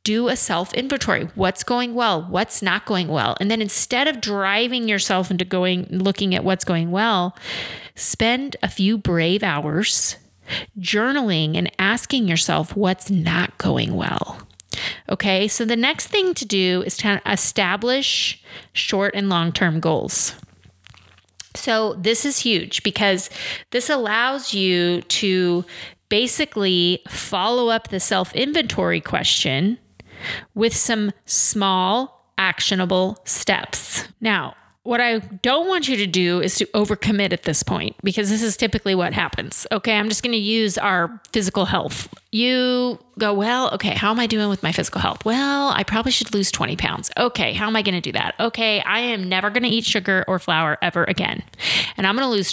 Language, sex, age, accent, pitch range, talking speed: English, female, 30-49, American, 180-230 Hz, 165 wpm